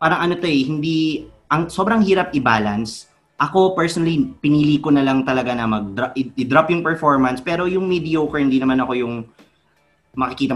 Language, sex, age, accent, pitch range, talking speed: English, male, 20-39, Filipino, 110-145 Hz, 170 wpm